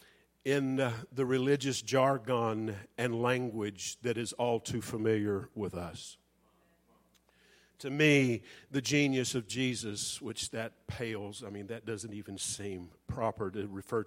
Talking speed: 130 wpm